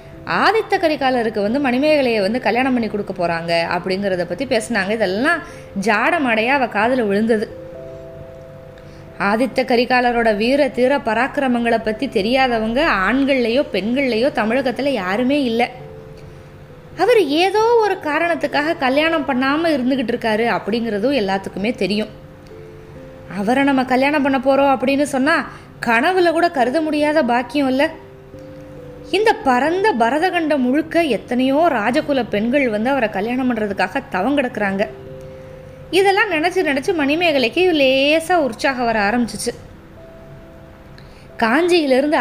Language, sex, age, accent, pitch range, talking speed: Tamil, female, 20-39, native, 210-295 Hz, 105 wpm